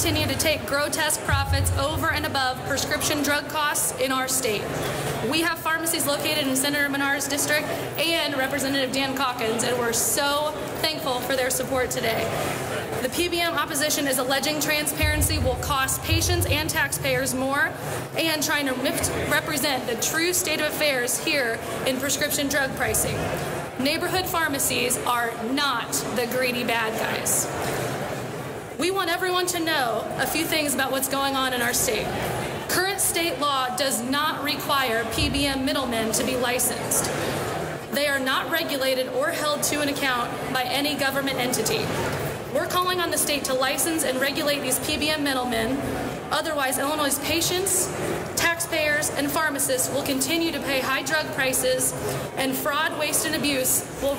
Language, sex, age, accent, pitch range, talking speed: English, female, 20-39, American, 260-310 Hz, 150 wpm